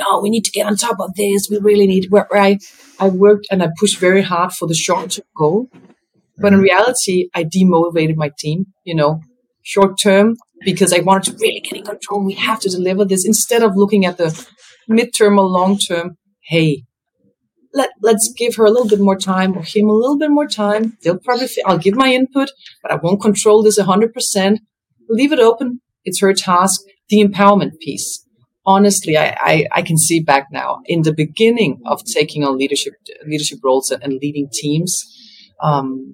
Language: English